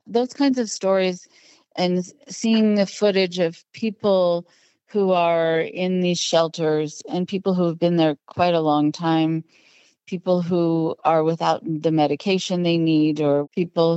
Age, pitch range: 40-59, 160-190 Hz